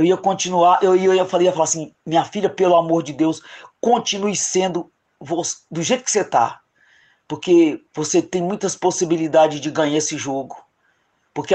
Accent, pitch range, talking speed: Brazilian, 170-240 Hz, 175 wpm